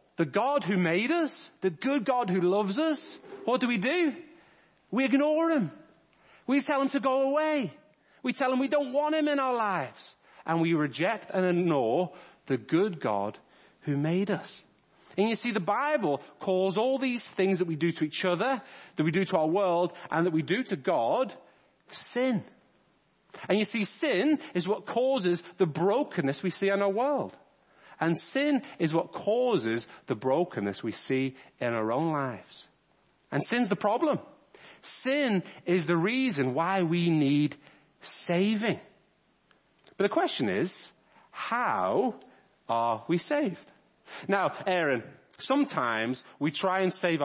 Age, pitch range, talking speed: 40-59, 165-260 Hz, 160 wpm